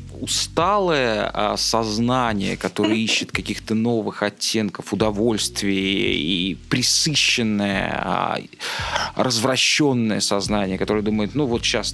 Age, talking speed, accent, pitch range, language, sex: 20-39, 95 wpm, native, 100-115 Hz, Russian, male